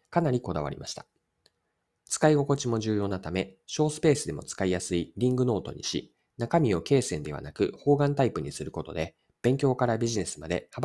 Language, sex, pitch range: Japanese, male, 90-145 Hz